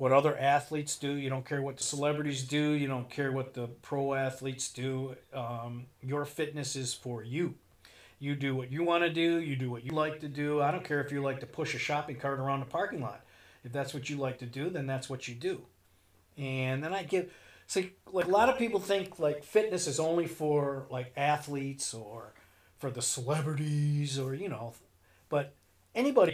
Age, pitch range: 40-59, 125-145 Hz